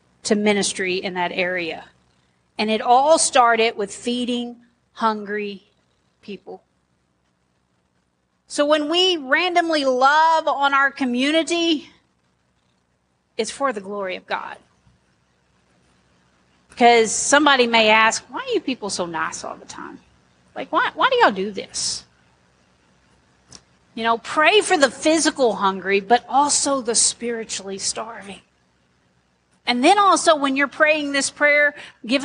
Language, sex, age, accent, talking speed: English, female, 40-59, American, 125 wpm